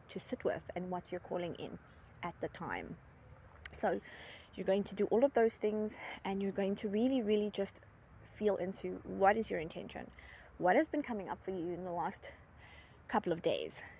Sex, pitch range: female, 185-205 Hz